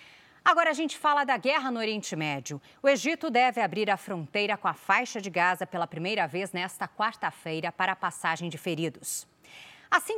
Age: 30-49